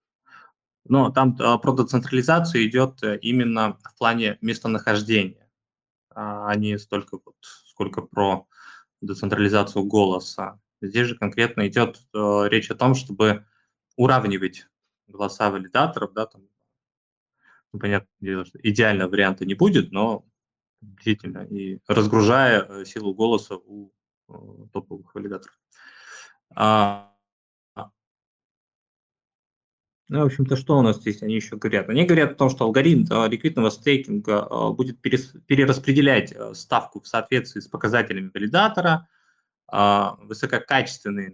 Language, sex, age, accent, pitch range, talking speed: Russian, male, 20-39, native, 100-130 Hz, 105 wpm